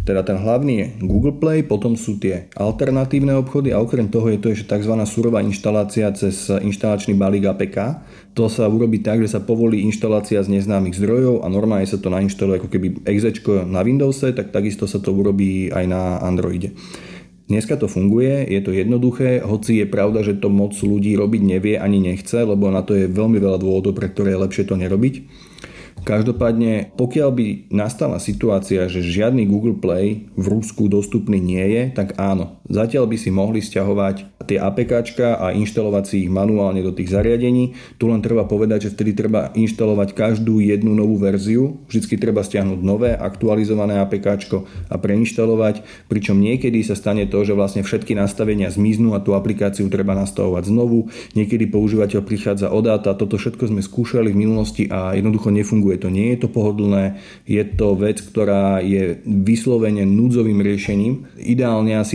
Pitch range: 100-110 Hz